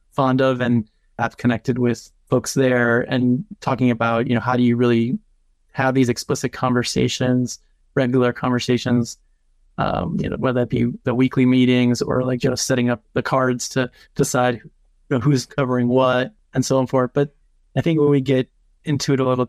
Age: 20-39